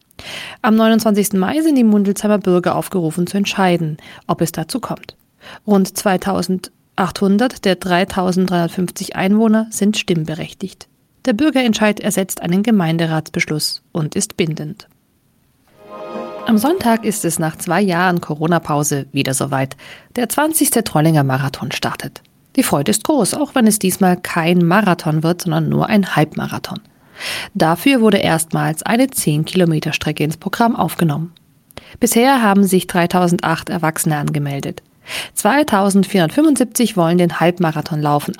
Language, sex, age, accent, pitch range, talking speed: German, female, 40-59, German, 165-215 Hz, 120 wpm